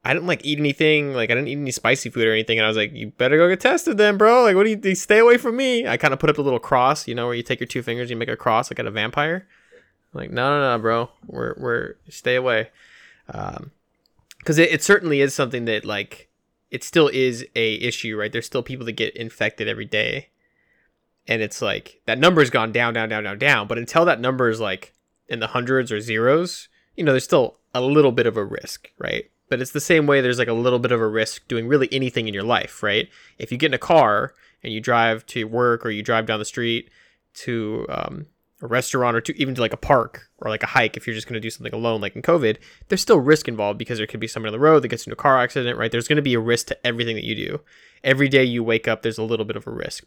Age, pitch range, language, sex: 20-39, 115-140 Hz, English, male